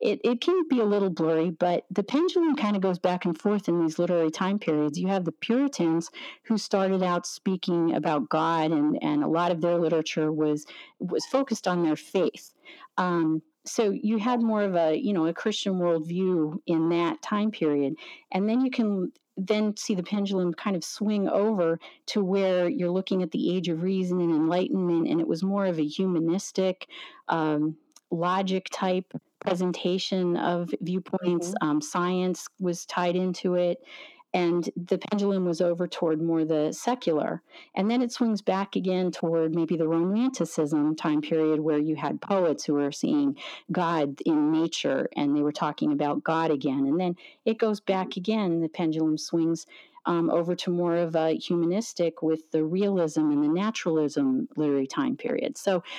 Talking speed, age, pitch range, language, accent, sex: 175 wpm, 40-59, 165-210 Hz, English, American, female